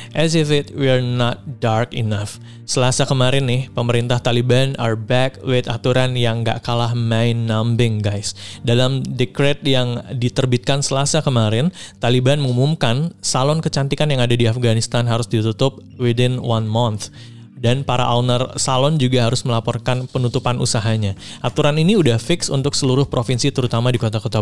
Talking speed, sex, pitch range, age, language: 145 wpm, male, 115-135 Hz, 20-39, Indonesian